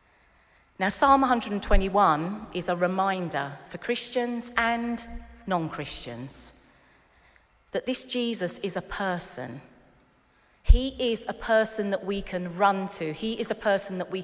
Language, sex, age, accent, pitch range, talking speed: English, female, 40-59, British, 150-210 Hz, 130 wpm